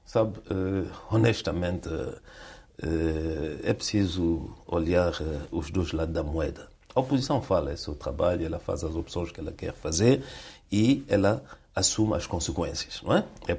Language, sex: Portuguese, male